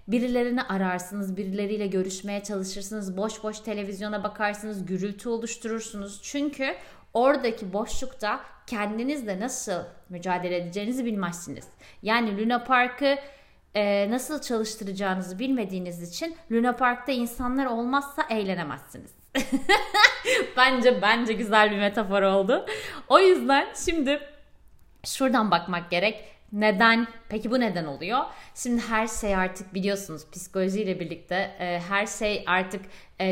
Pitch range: 185-240 Hz